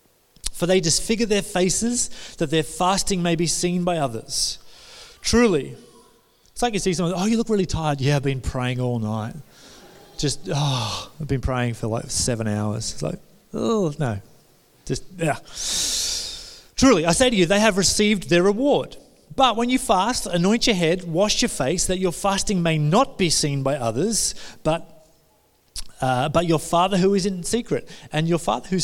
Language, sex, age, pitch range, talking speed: English, male, 30-49, 145-200 Hz, 180 wpm